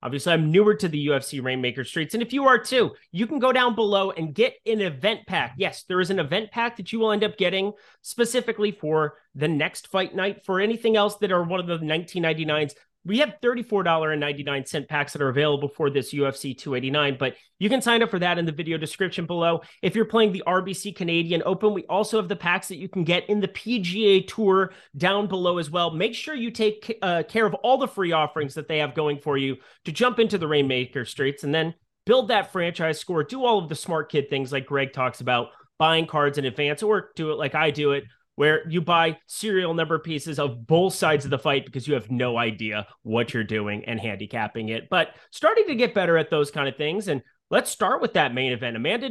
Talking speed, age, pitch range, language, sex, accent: 230 wpm, 30-49, 145-210 Hz, English, male, American